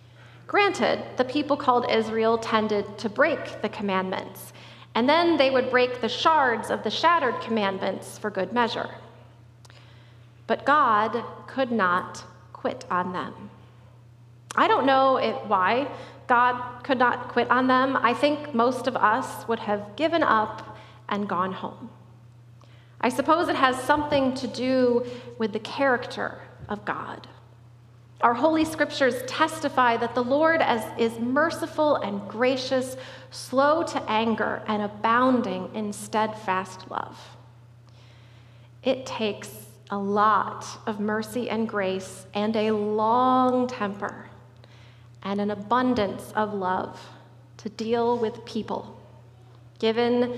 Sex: female